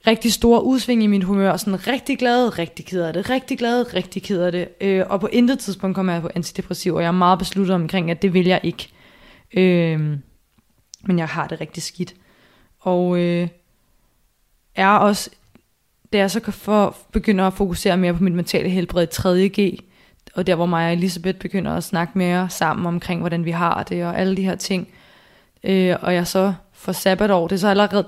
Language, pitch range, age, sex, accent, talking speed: Danish, 170-195 Hz, 20-39, female, native, 200 wpm